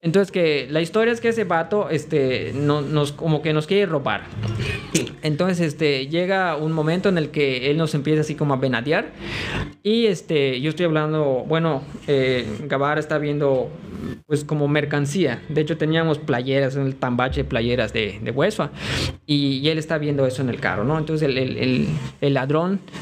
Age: 20-39